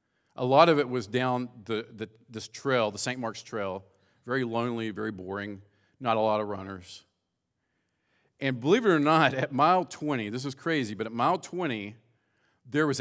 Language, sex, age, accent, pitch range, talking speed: English, male, 50-69, American, 115-155 Hz, 185 wpm